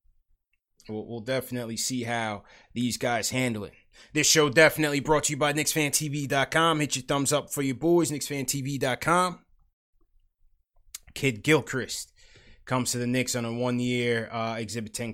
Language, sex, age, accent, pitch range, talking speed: English, male, 20-39, American, 125-150 Hz, 145 wpm